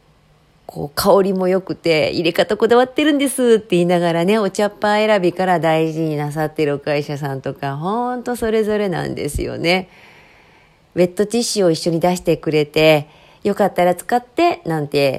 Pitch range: 165-230 Hz